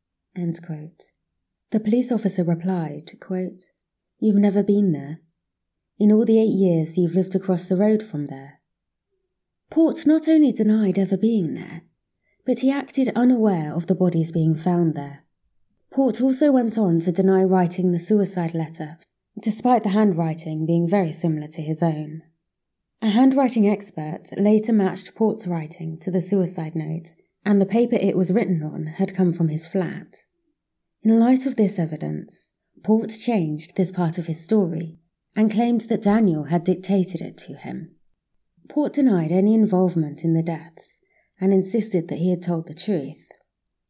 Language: English